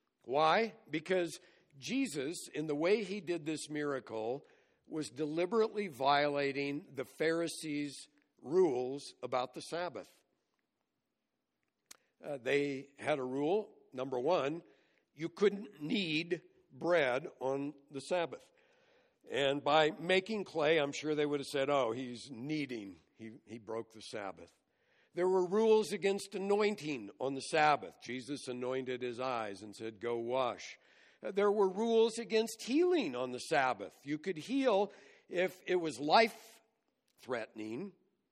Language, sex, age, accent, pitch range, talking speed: English, male, 60-79, American, 125-190 Hz, 130 wpm